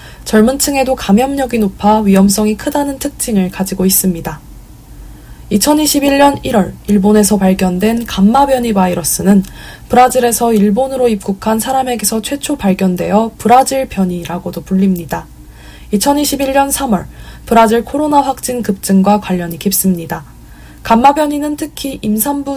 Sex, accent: female, native